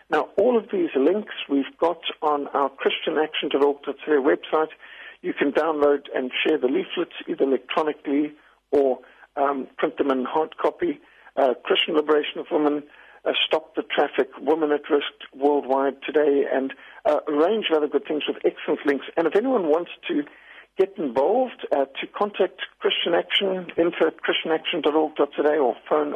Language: English